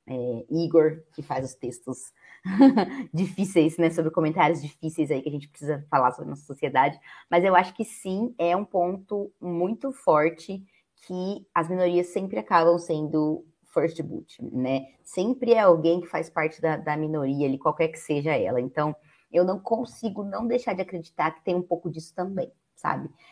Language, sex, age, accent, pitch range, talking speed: Portuguese, female, 20-39, Brazilian, 150-180 Hz, 170 wpm